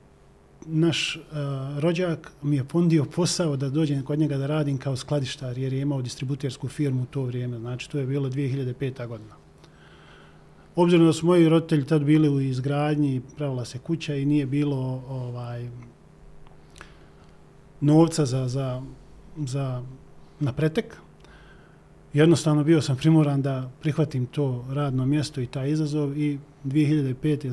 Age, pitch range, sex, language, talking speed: 40-59, 130-150 Hz, male, Croatian, 140 wpm